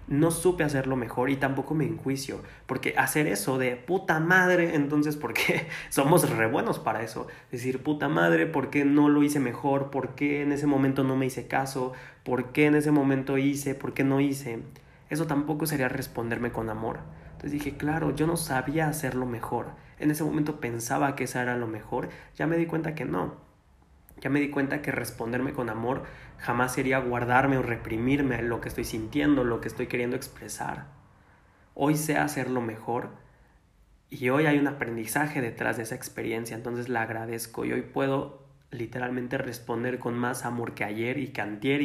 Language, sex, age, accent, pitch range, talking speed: Spanish, male, 20-39, Mexican, 115-145 Hz, 185 wpm